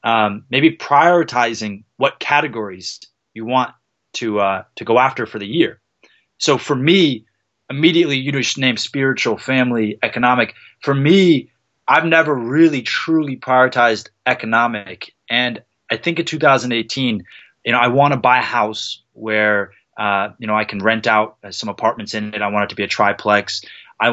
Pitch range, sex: 110-140 Hz, male